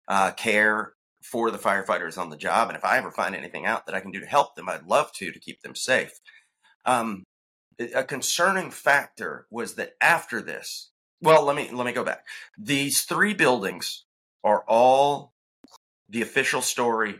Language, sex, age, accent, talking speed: English, male, 30-49, American, 180 wpm